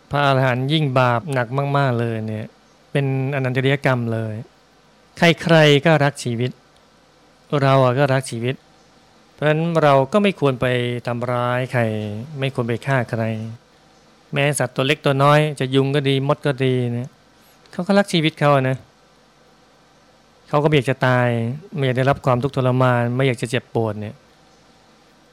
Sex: male